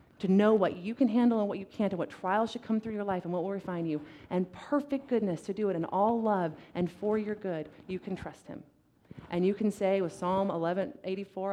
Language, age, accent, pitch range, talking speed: English, 30-49, American, 165-210 Hz, 250 wpm